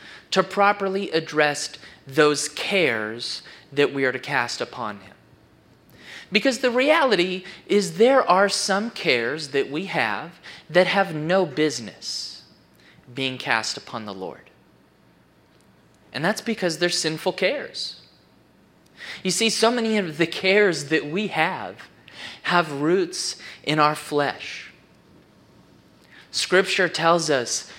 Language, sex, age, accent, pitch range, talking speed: English, male, 30-49, American, 150-200 Hz, 120 wpm